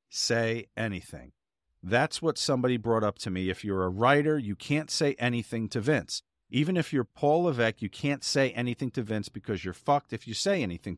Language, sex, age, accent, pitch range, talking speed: English, male, 40-59, American, 110-140 Hz, 200 wpm